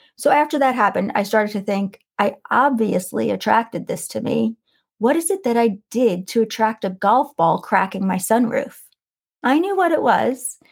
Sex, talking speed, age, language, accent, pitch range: female, 185 wpm, 30-49, English, American, 200-255 Hz